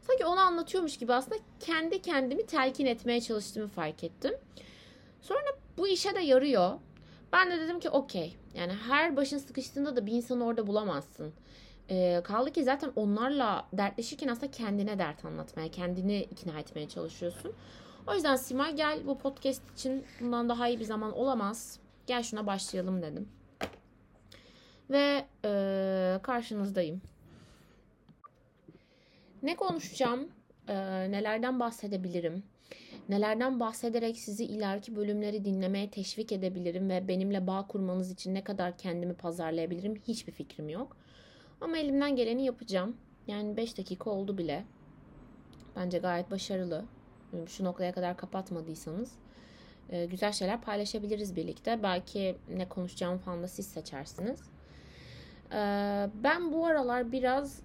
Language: Turkish